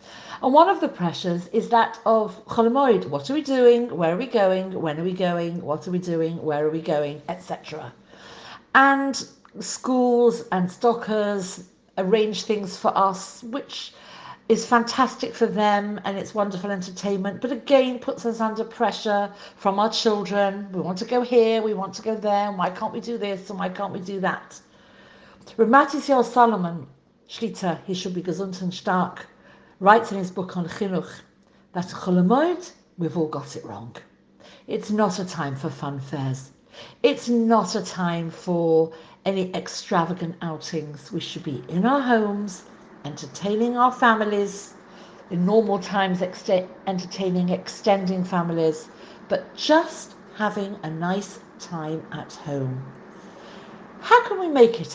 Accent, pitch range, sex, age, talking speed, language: British, 175-225 Hz, female, 50-69, 155 wpm, English